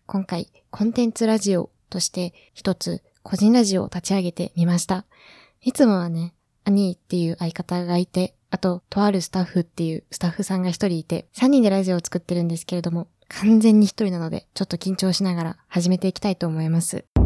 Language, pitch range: Japanese, 180-215 Hz